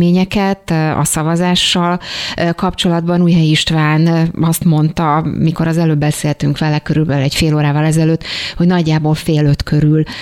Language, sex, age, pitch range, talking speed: Hungarian, female, 30-49, 150-165 Hz, 130 wpm